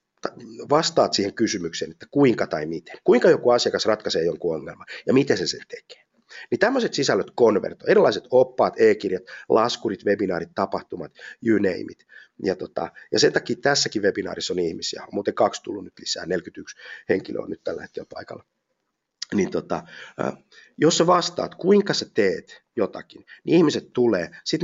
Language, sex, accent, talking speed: Finnish, male, native, 155 wpm